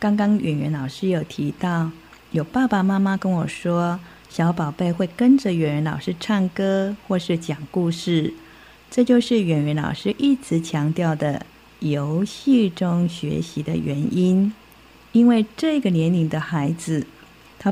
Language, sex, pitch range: Chinese, female, 160-210 Hz